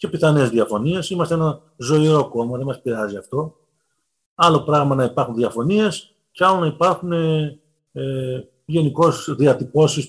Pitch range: 135-175 Hz